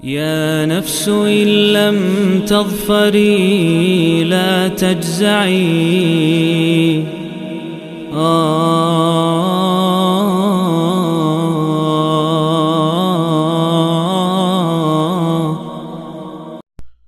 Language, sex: Indonesian, male